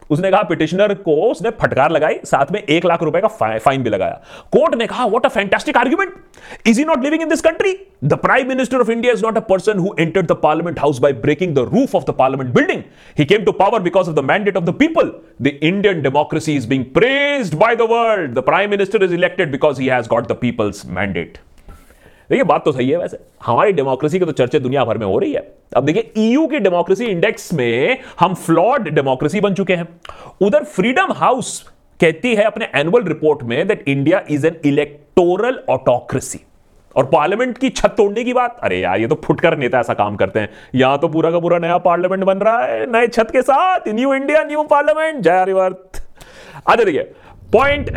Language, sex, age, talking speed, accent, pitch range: Hindi, male, 30-49, 195 wpm, native, 155-240 Hz